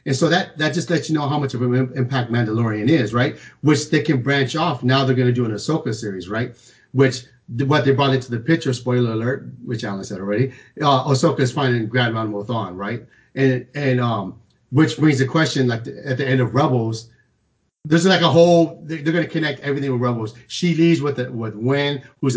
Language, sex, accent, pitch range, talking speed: English, male, American, 125-145 Hz, 210 wpm